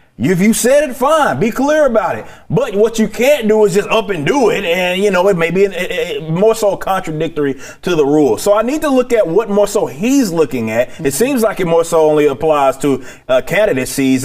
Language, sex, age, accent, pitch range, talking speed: English, male, 30-49, American, 135-200 Hz, 230 wpm